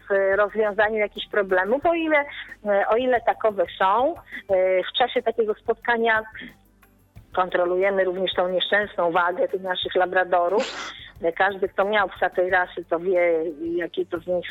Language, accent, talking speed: Polish, native, 140 wpm